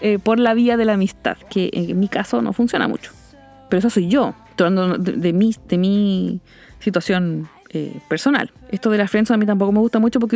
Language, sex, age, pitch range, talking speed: English, female, 20-39, 200-250 Hz, 225 wpm